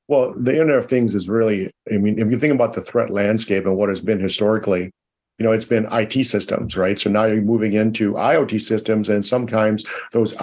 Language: English